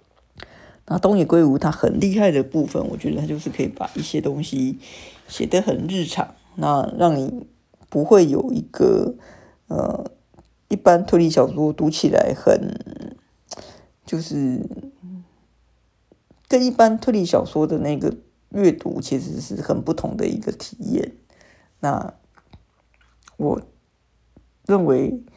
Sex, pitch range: female, 135-195 Hz